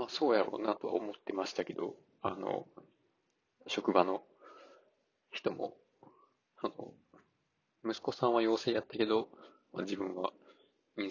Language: Japanese